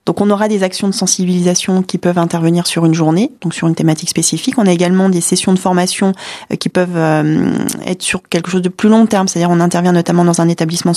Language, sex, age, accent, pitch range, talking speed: French, female, 20-39, French, 170-195 Hz, 230 wpm